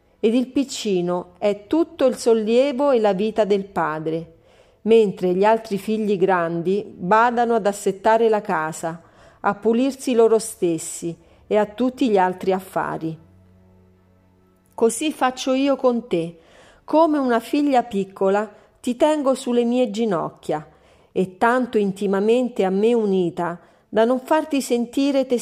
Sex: female